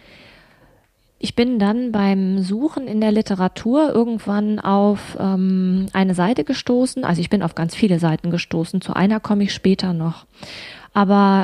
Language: German